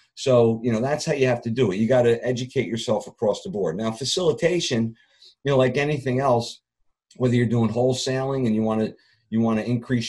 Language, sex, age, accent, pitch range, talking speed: English, male, 50-69, American, 105-130 Hz, 210 wpm